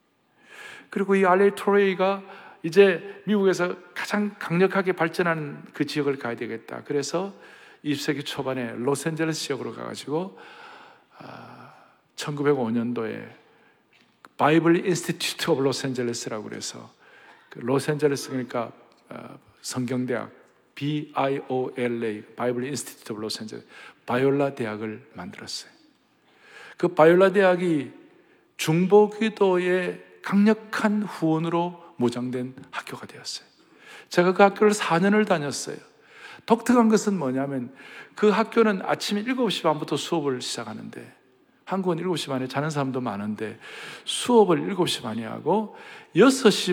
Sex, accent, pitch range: male, native, 135-200 Hz